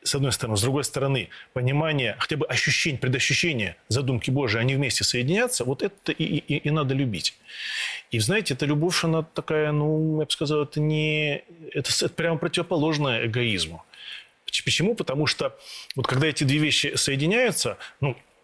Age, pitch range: 30-49, 130-180 Hz